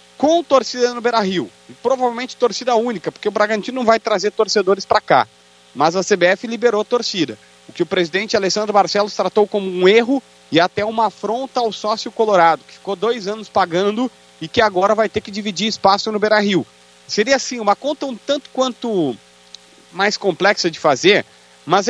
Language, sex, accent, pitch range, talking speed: Portuguese, male, Brazilian, 175-225 Hz, 180 wpm